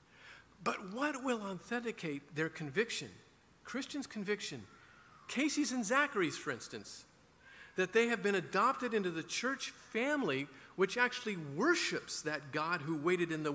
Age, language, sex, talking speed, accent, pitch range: 50-69, English, male, 135 wpm, American, 135-180 Hz